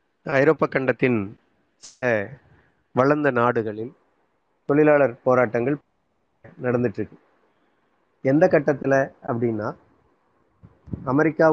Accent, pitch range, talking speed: native, 120-150 Hz, 60 wpm